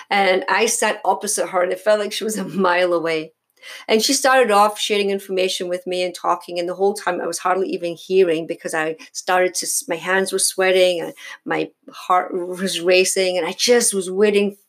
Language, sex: English, female